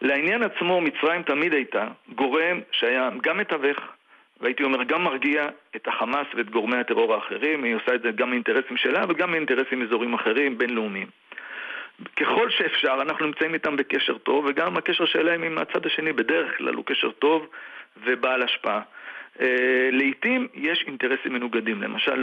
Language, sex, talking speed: Hebrew, male, 150 wpm